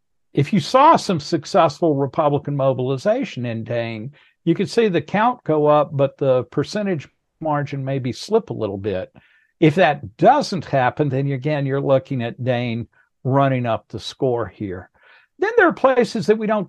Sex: male